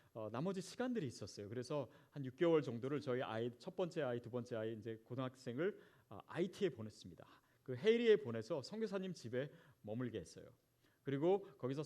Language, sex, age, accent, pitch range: Korean, male, 30-49, native, 125-175 Hz